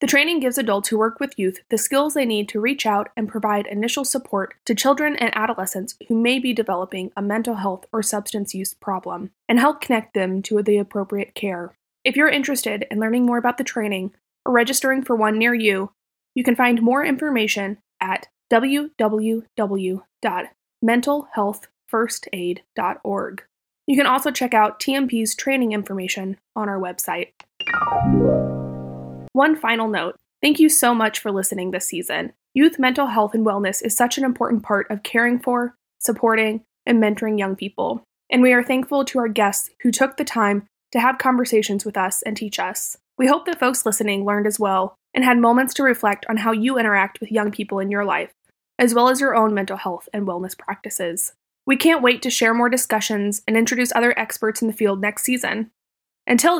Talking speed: 185 wpm